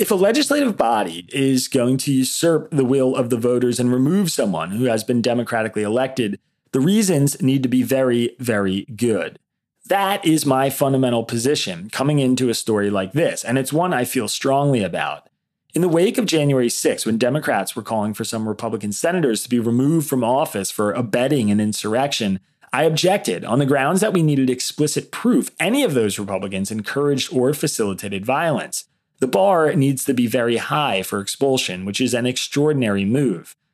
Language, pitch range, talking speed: English, 115-145 Hz, 180 wpm